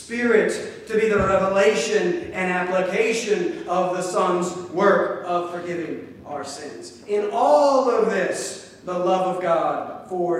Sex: male